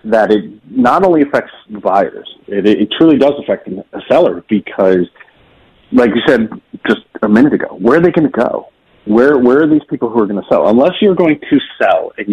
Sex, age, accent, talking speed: male, 40-59, American, 210 wpm